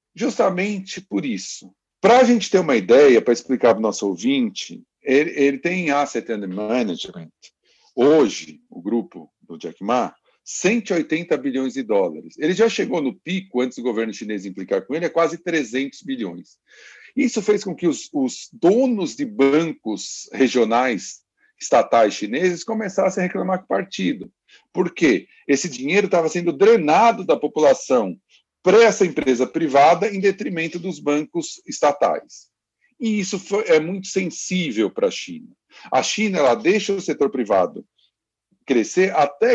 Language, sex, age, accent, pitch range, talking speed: Portuguese, male, 50-69, Brazilian, 140-225 Hz, 150 wpm